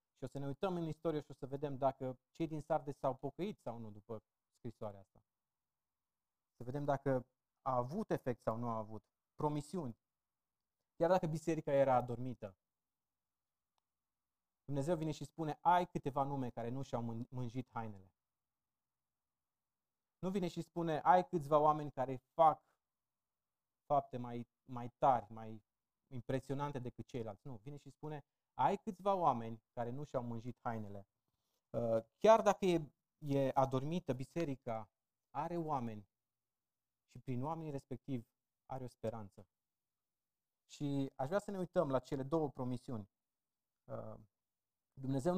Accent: native